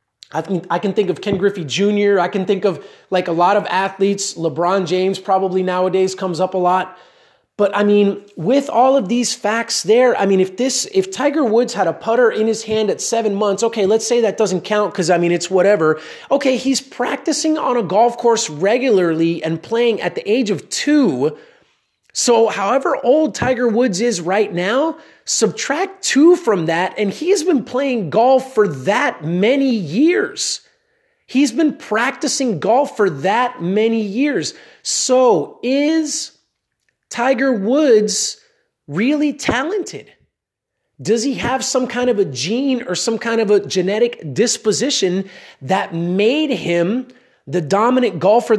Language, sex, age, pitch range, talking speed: English, male, 30-49, 195-260 Hz, 160 wpm